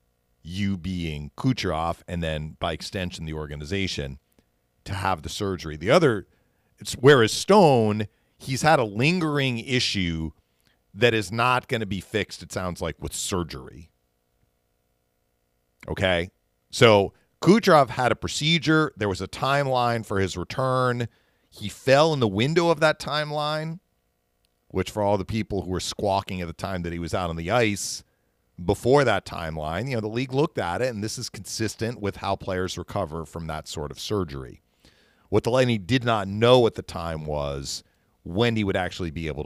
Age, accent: 40-59, American